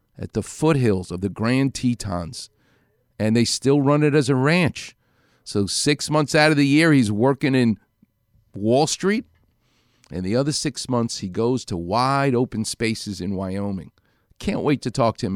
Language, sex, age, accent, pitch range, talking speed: English, male, 50-69, American, 110-140 Hz, 180 wpm